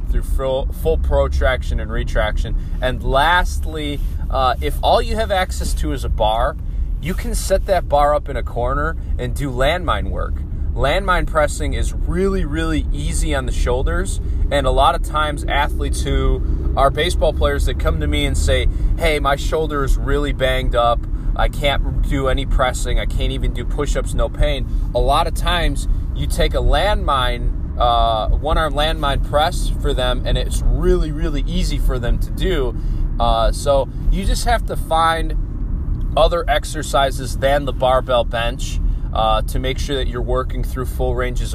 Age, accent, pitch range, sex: 20-39, American, 75-125 Hz, male